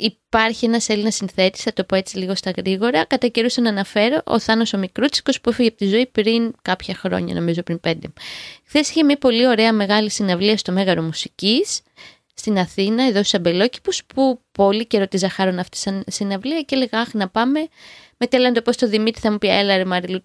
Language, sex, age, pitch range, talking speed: Greek, female, 20-39, 195-255 Hz, 200 wpm